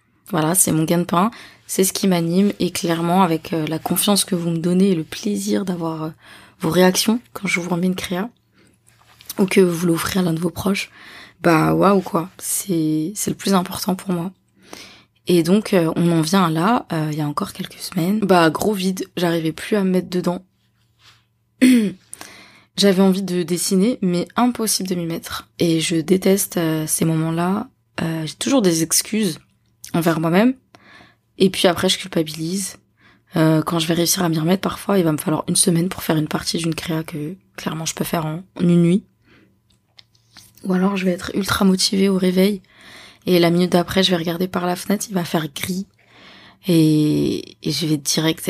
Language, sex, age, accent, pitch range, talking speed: French, female, 20-39, French, 160-190 Hz, 195 wpm